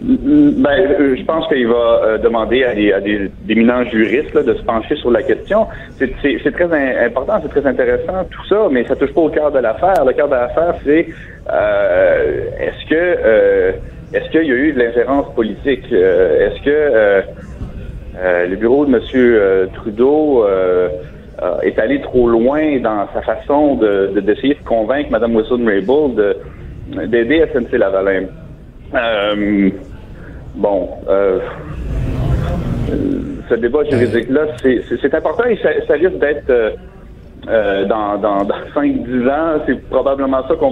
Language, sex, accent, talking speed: French, male, Canadian, 165 wpm